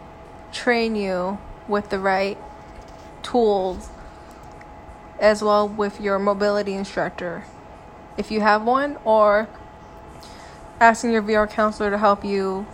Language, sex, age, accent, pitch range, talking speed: English, female, 20-39, American, 200-225 Hz, 115 wpm